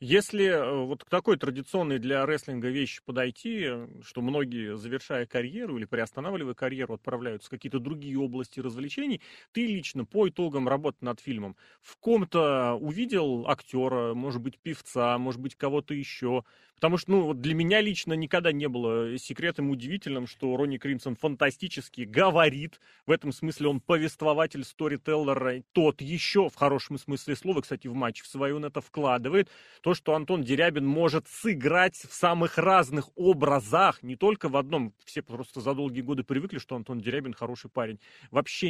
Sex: male